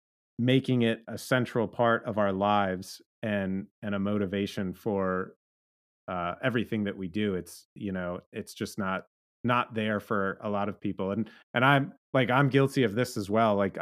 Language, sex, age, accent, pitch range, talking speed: English, male, 30-49, American, 105-125 Hz, 180 wpm